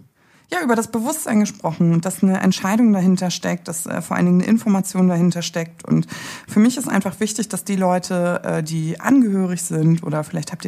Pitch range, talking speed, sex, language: 175-225 Hz, 200 wpm, female, German